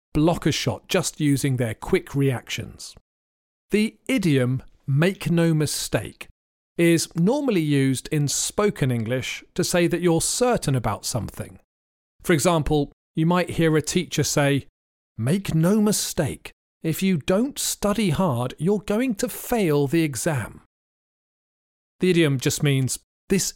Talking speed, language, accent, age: 135 wpm, English, British, 40-59